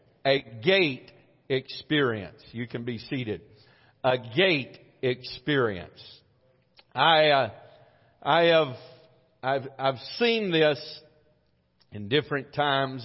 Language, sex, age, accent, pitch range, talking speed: English, male, 50-69, American, 120-140 Hz, 95 wpm